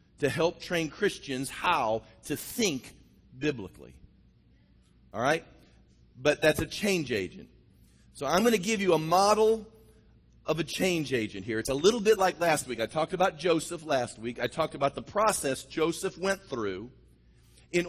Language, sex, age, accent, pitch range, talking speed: English, male, 40-59, American, 125-175 Hz, 170 wpm